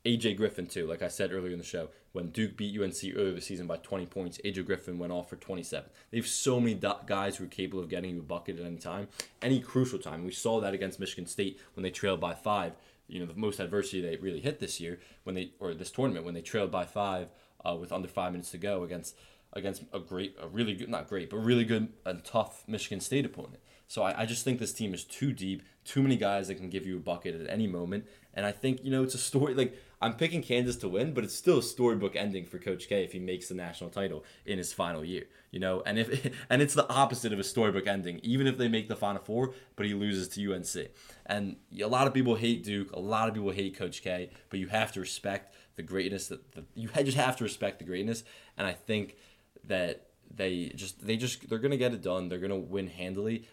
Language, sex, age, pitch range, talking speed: English, male, 20-39, 90-115 Hz, 255 wpm